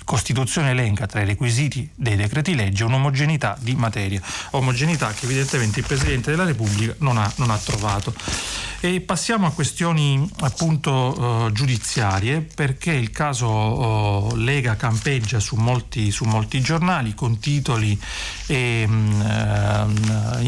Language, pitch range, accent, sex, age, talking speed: Italian, 110-140 Hz, native, male, 40-59, 135 wpm